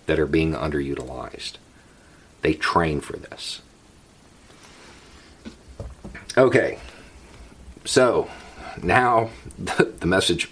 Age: 50-69